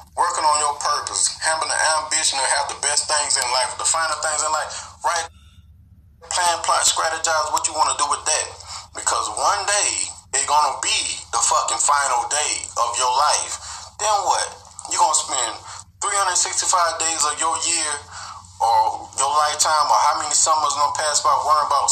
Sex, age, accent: male, 20-39, American